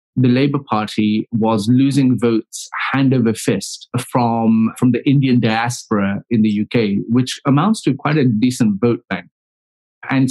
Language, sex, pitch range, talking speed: English, male, 115-135 Hz, 150 wpm